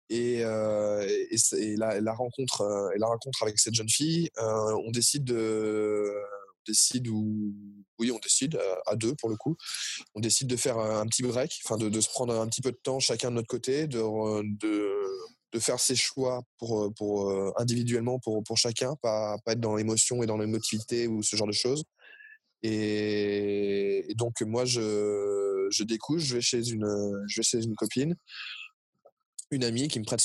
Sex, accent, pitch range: male, French, 105-120 Hz